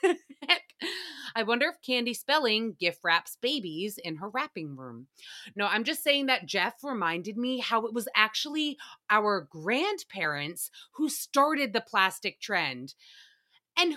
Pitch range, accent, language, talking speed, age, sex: 230-325 Hz, American, English, 135 wpm, 30-49, female